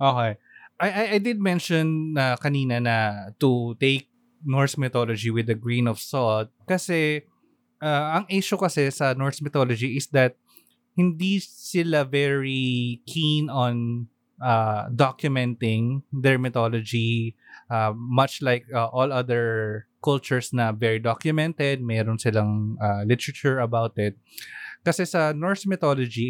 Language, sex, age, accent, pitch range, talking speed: Filipino, male, 20-39, native, 115-145 Hz, 130 wpm